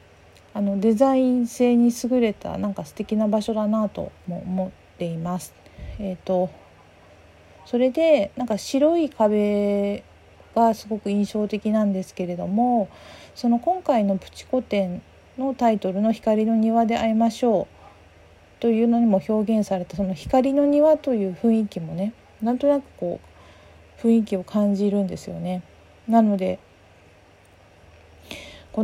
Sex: female